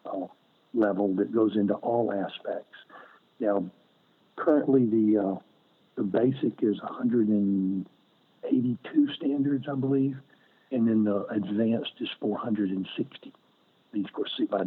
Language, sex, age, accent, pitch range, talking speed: English, male, 60-79, American, 100-130 Hz, 120 wpm